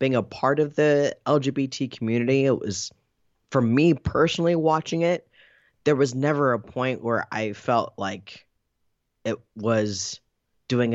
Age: 20-39